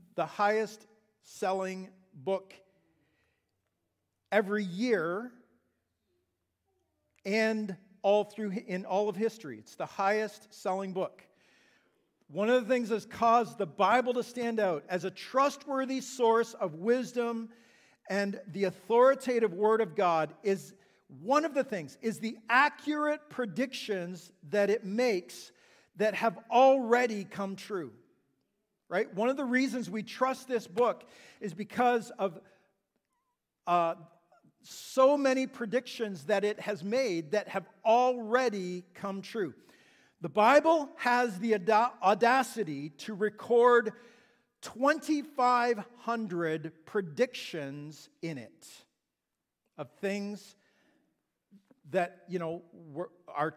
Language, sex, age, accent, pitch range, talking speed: English, male, 50-69, American, 185-240 Hz, 110 wpm